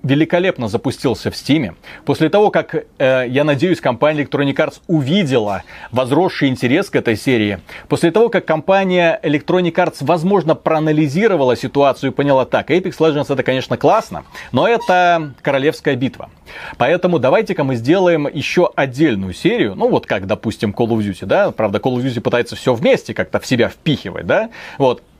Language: Russian